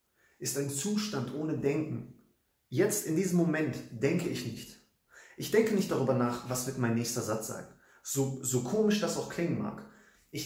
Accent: German